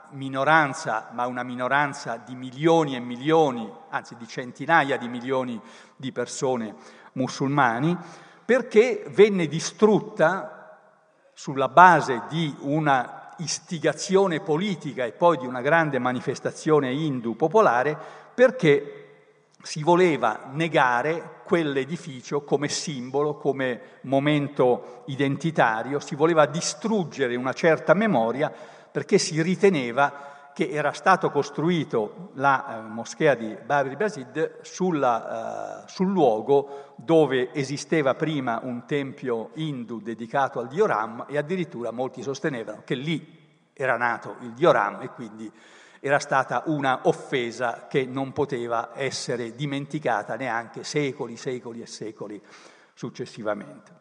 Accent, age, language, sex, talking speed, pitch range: native, 50-69, Italian, male, 110 wpm, 125-160 Hz